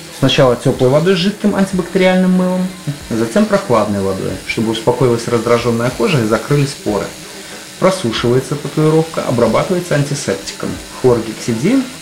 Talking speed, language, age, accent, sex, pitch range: 110 wpm, Russian, 30-49, native, male, 115-170 Hz